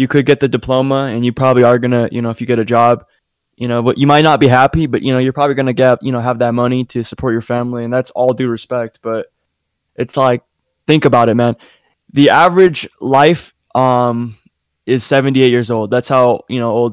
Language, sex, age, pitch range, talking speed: English, male, 20-39, 120-145 Hz, 235 wpm